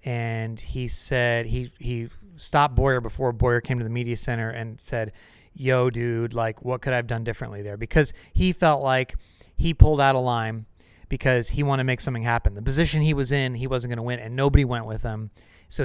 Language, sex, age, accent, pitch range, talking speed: English, male, 30-49, American, 115-140 Hz, 220 wpm